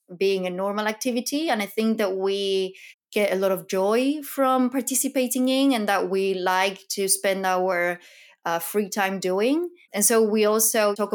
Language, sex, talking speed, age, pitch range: English, female, 180 wpm, 20-39, 190-230 Hz